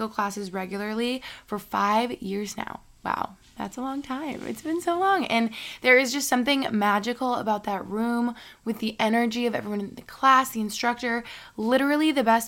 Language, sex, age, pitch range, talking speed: English, female, 20-39, 210-245 Hz, 180 wpm